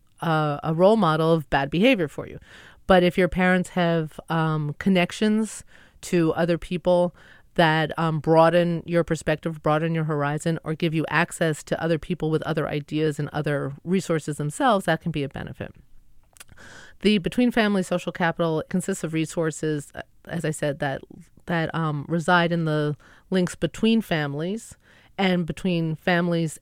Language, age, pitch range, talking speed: English, 30-49, 155-180 Hz, 155 wpm